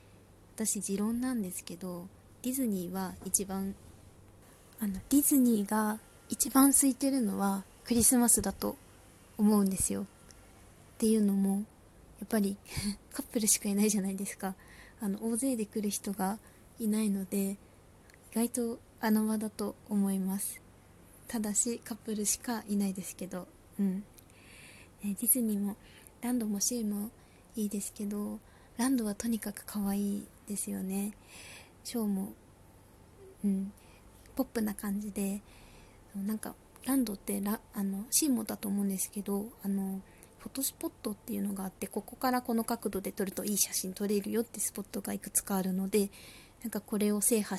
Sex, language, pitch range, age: female, Japanese, 190-225 Hz, 20-39